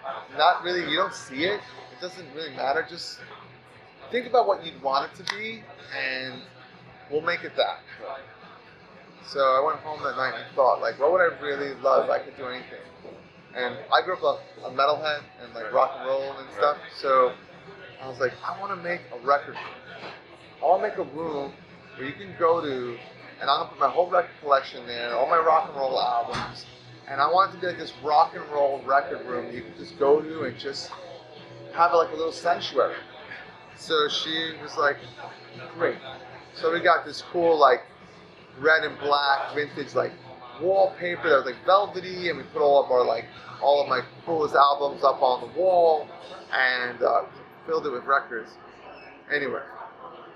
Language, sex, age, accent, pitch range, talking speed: English, male, 30-49, American, 130-175 Hz, 190 wpm